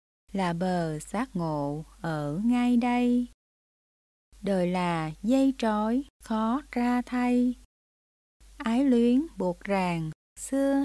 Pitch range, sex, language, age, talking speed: 175-250 Hz, female, Vietnamese, 20-39, 105 wpm